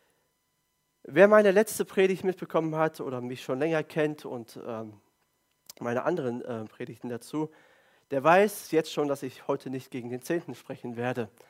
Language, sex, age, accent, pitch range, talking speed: German, male, 40-59, German, 130-175 Hz, 150 wpm